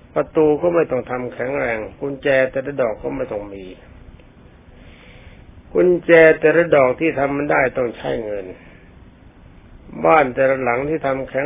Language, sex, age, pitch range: Thai, male, 60-79, 100-150 Hz